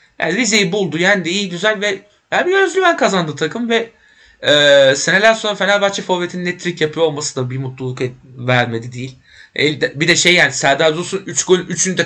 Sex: male